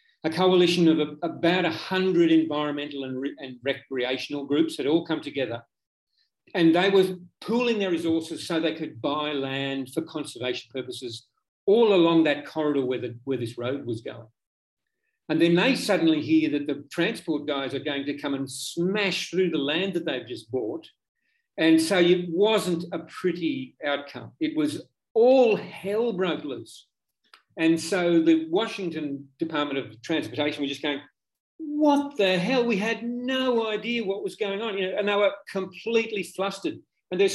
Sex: male